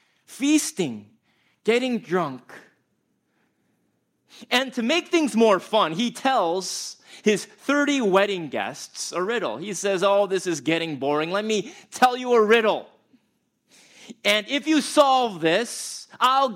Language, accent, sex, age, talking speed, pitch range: English, American, male, 30-49, 130 wpm, 165-245 Hz